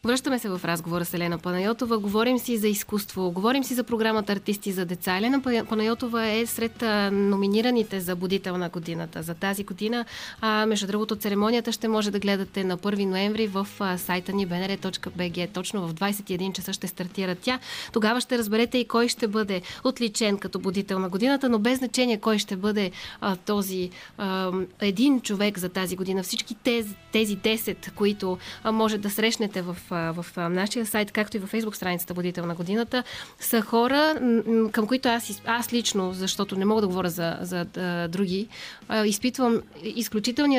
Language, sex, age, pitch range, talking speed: Bulgarian, female, 20-39, 190-230 Hz, 165 wpm